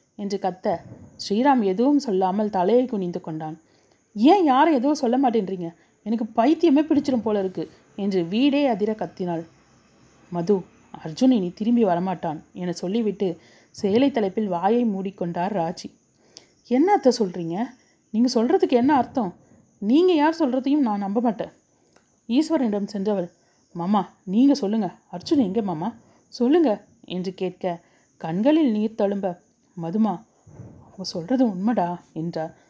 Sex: female